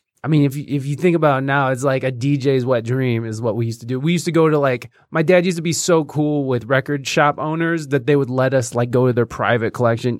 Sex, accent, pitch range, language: male, American, 115-150 Hz, English